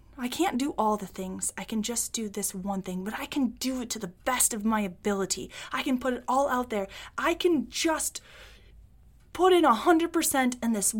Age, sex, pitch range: 20-39, female, 215-330 Hz